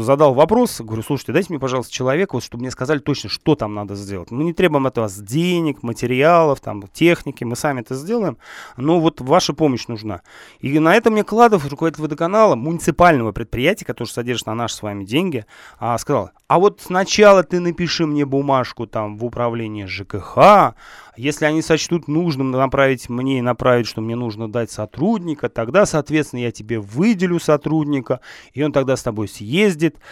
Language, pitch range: Russian, 120-180 Hz